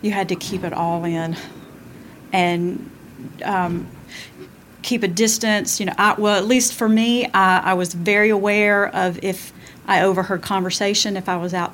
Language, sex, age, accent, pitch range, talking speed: English, female, 40-59, American, 175-210 Hz, 175 wpm